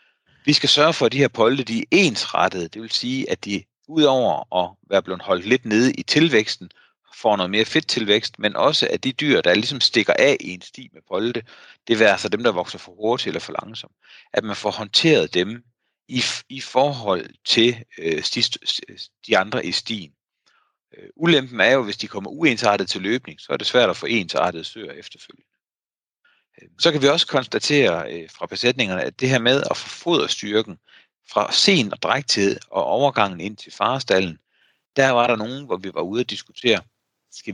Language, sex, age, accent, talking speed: Danish, male, 40-59, native, 210 wpm